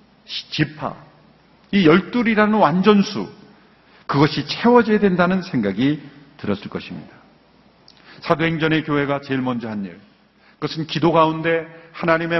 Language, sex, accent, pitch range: Korean, male, native, 155-205 Hz